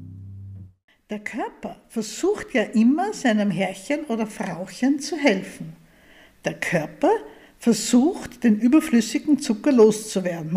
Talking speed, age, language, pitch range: 100 wpm, 60-79, German, 205-280 Hz